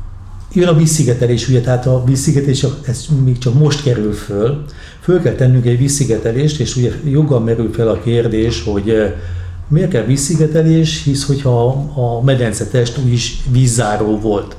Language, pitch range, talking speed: Hungarian, 110-140 Hz, 150 wpm